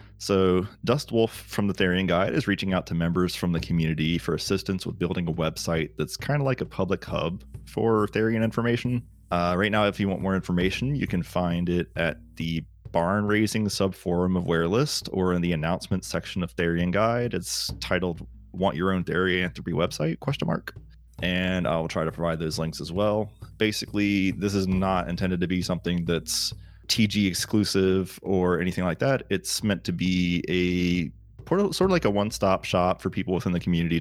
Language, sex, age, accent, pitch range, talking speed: English, male, 30-49, American, 85-105 Hz, 190 wpm